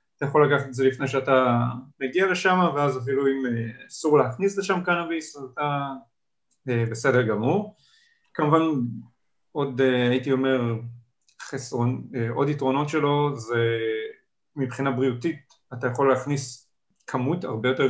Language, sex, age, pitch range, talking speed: Hebrew, male, 30-49, 115-145 Hz, 120 wpm